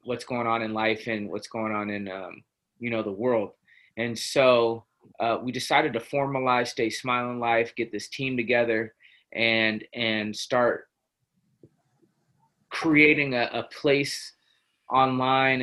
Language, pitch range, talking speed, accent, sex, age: English, 115-135 Hz, 140 wpm, American, male, 20-39